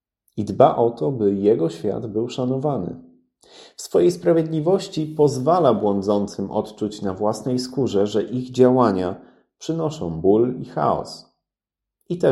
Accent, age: native, 30-49